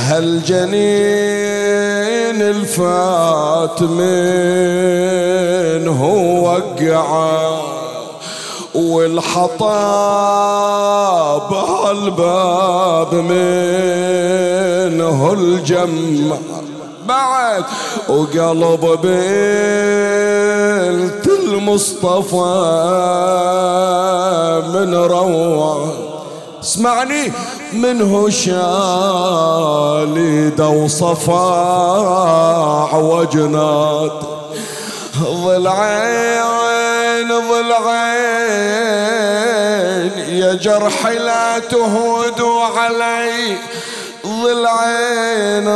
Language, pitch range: Arabic, 170-210 Hz